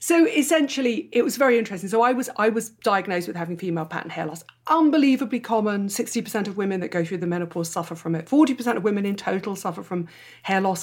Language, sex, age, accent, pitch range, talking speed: English, female, 40-59, British, 165-210 Hz, 220 wpm